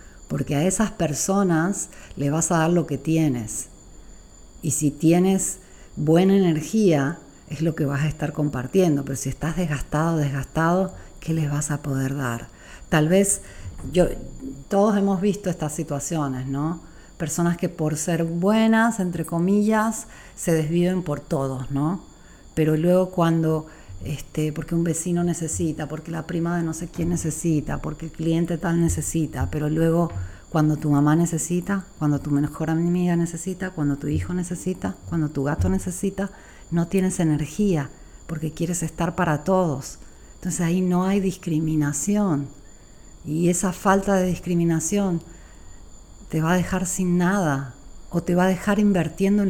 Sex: female